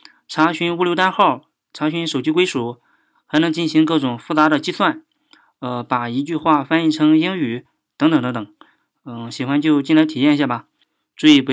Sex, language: male, Chinese